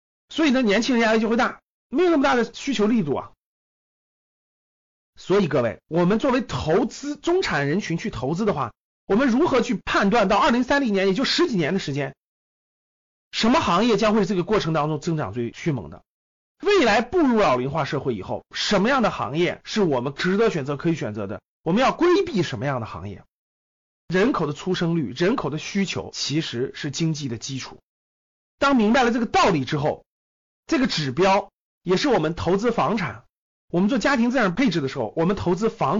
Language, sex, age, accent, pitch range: Chinese, male, 30-49, native, 140-215 Hz